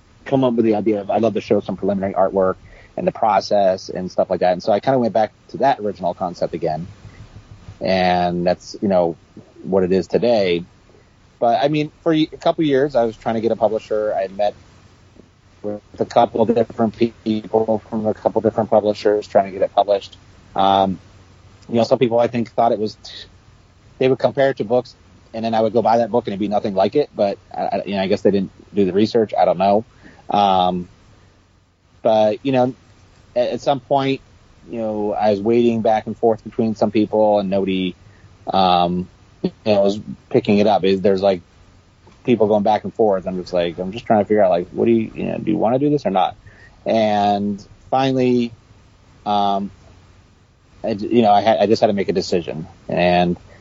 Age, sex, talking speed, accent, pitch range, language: 30-49, male, 215 wpm, American, 95-115 Hz, English